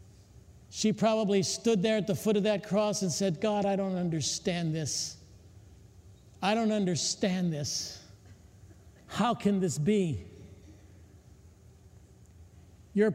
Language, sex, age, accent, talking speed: English, male, 50-69, American, 120 wpm